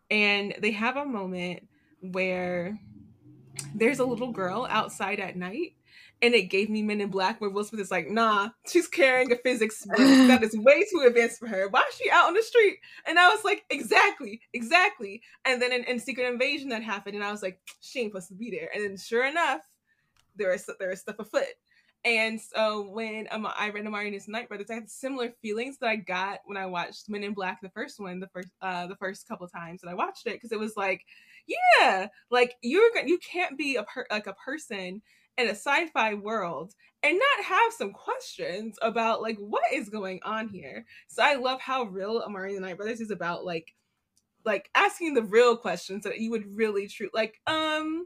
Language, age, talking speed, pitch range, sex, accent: English, 20-39, 215 wpm, 195-255 Hz, female, American